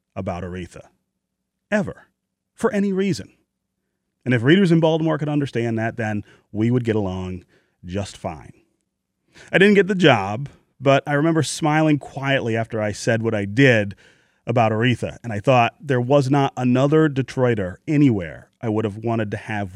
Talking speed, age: 165 wpm, 30-49